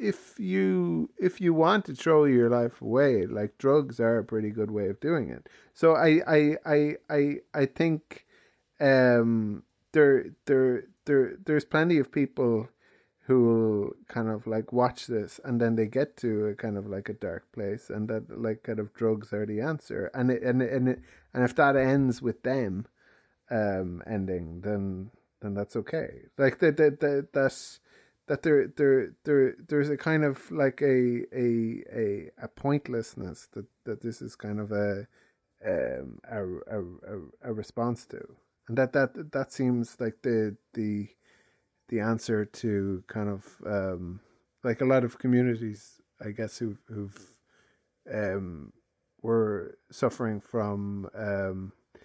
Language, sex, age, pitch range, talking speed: English, male, 30-49, 105-135 Hz, 160 wpm